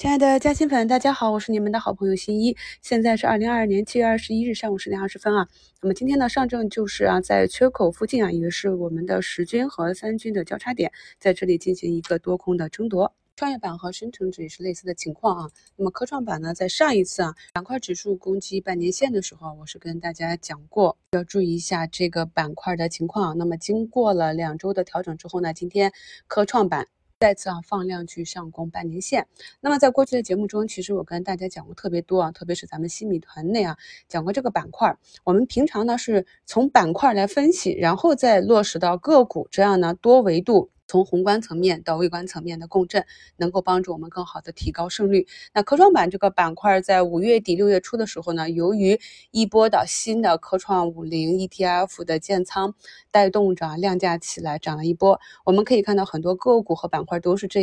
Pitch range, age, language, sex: 175-215 Hz, 20-39, Chinese, female